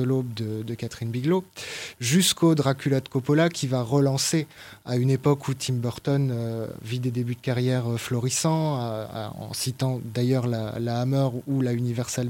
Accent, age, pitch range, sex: French, 20-39, 120-145 Hz, male